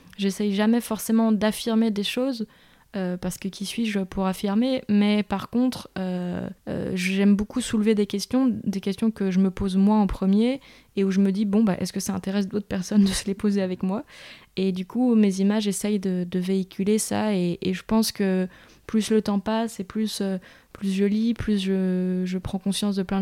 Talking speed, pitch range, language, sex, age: 215 wpm, 190-215 Hz, French, female, 20-39